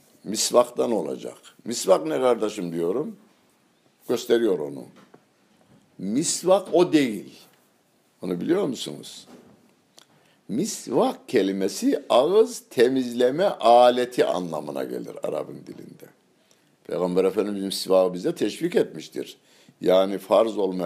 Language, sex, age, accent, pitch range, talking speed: Turkish, male, 60-79, native, 110-165 Hz, 95 wpm